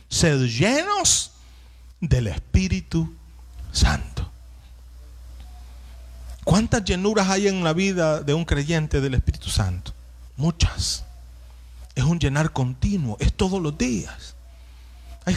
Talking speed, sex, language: 105 wpm, male, Spanish